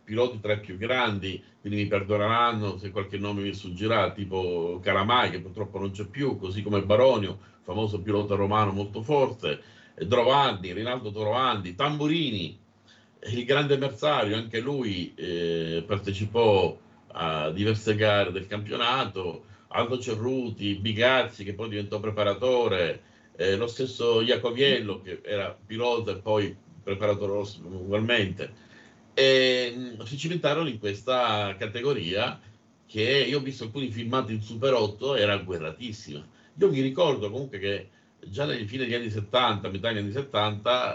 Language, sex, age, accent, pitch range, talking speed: Italian, male, 50-69, native, 100-125 Hz, 140 wpm